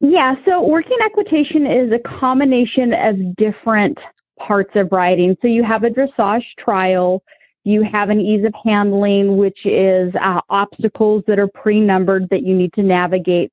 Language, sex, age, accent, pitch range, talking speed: English, female, 30-49, American, 185-220 Hz, 160 wpm